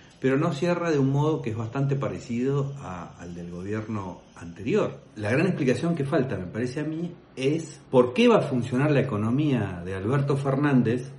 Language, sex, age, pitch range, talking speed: Spanish, male, 50-69, 105-150 Hz, 180 wpm